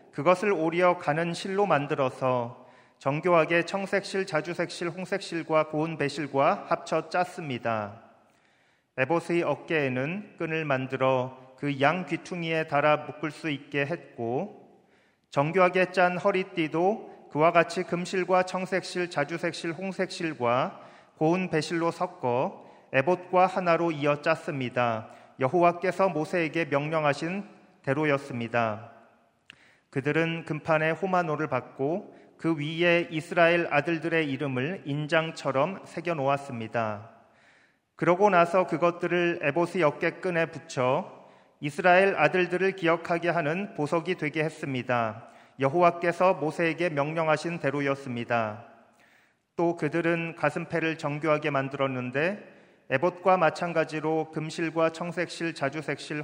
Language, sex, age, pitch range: Korean, male, 40-59, 140-175 Hz